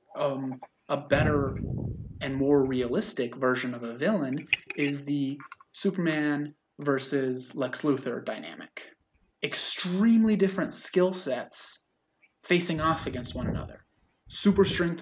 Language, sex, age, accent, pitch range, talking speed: English, male, 20-39, American, 125-150 Hz, 110 wpm